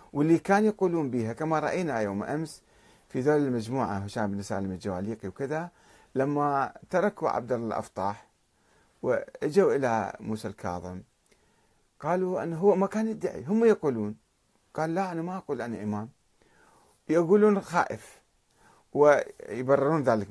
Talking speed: 125 wpm